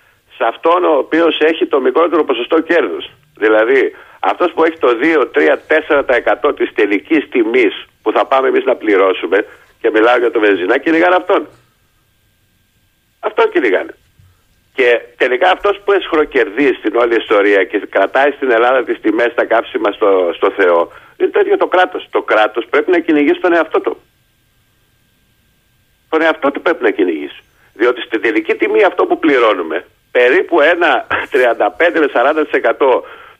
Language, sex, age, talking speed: Greek, male, 50-69, 145 wpm